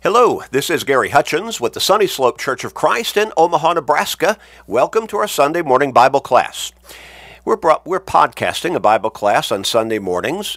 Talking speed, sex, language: 180 wpm, male, English